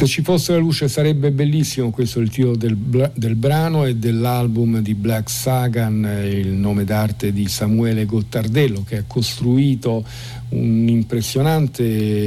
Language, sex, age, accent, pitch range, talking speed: Italian, male, 50-69, native, 105-130 Hz, 145 wpm